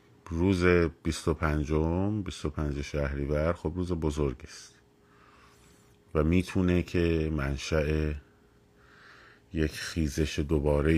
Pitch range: 75-85 Hz